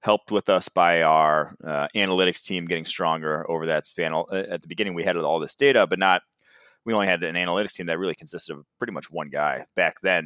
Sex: male